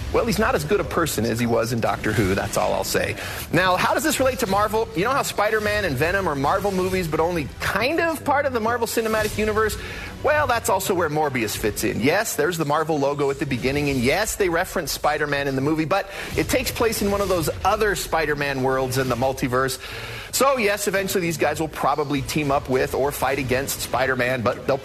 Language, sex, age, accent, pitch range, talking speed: English, male, 40-59, American, 130-195 Hz, 230 wpm